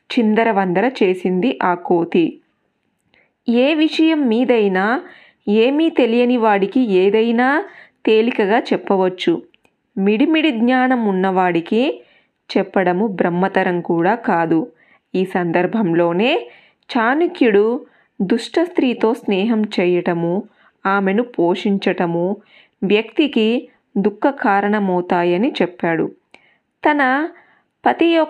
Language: Telugu